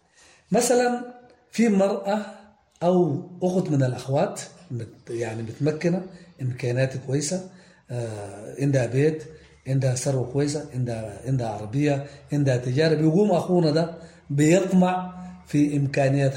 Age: 40-59